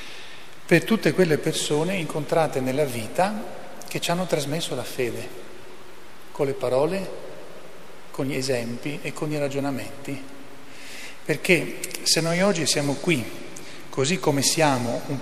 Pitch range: 135-165 Hz